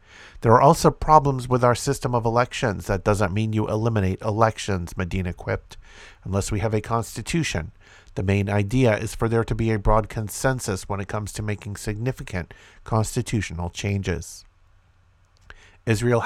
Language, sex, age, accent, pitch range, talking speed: English, male, 50-69, American, 95-115 Hz, 155 wpm